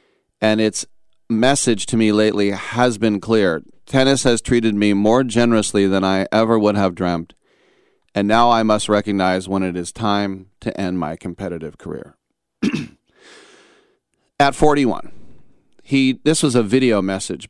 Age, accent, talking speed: 40-59, American, 145 wpm